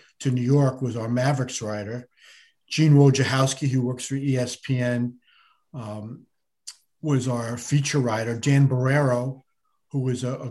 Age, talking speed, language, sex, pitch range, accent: 50-69, 135 wpm, English, male, 125-145 Hz, American